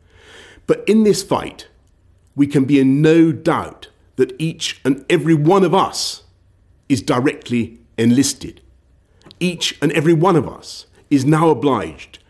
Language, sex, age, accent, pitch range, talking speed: English, male, 50-69, British, 90-140 Hz, 140 wpm